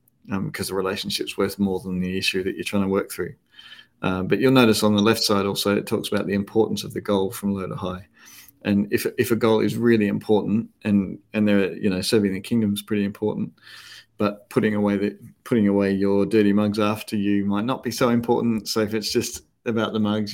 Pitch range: 95-110 Hz